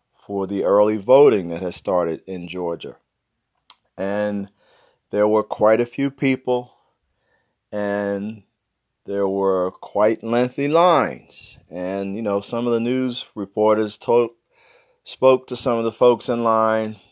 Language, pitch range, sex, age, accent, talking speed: English, 100-130 Hz, male, 40-59, American, 135 wpm